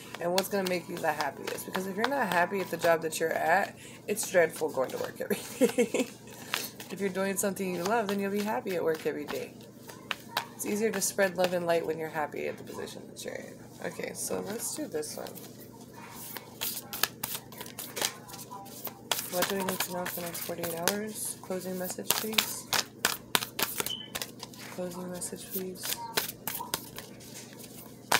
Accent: American